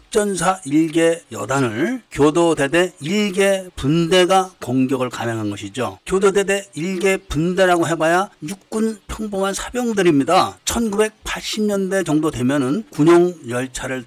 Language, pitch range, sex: Korean, 145-195 Hz, male